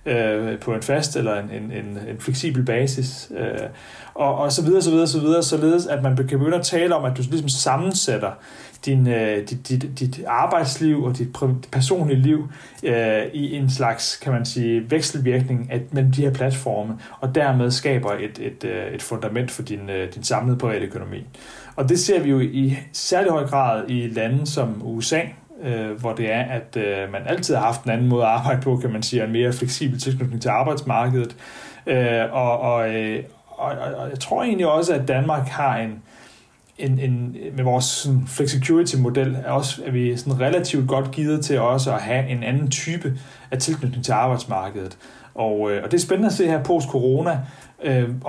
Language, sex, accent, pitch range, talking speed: Danish, male, native, 120-145 Hz, 195 wpm